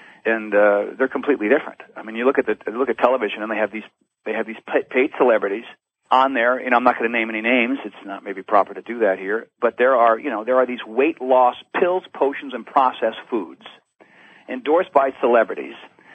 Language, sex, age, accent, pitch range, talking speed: English, male, 40-59, American, 110-135 Hz, 220 wpm